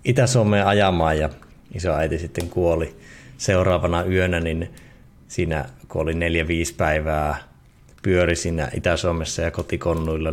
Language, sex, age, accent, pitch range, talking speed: Finnish, male, 30-49, native, 75-90 Hz, 105 wpm